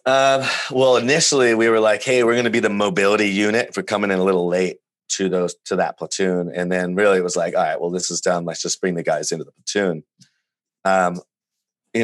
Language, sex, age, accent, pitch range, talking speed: English, male, 30-49, American, 85-100 Hz, 235 wpm